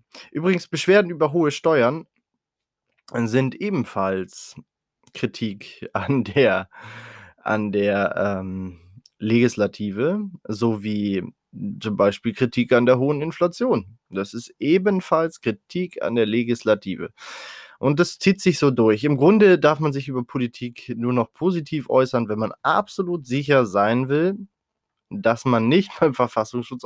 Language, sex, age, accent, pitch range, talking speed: German, male, 20-39, German, 110-145 Hz, 125 wpm